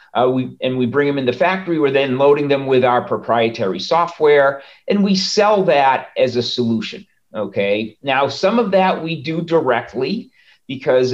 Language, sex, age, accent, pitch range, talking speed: English, male, 40-59, American, 120-150 Hz, 170 wpm